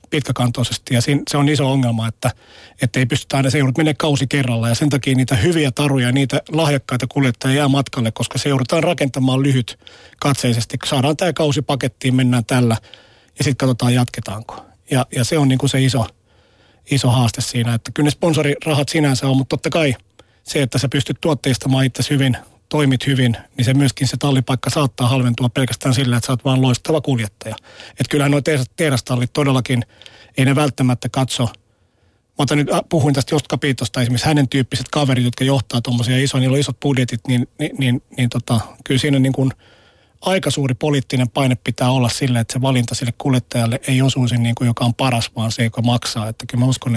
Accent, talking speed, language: native, 190 wpm, Finnish